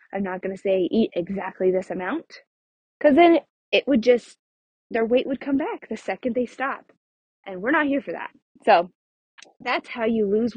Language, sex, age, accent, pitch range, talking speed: English, female, 20-39, American, 185-260 Hz, 195 wpm